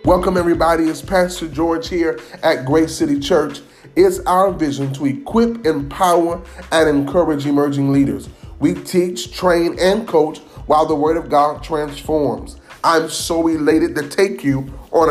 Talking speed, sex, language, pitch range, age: 150 wpm, male, English, 105-150 Hz, 30-49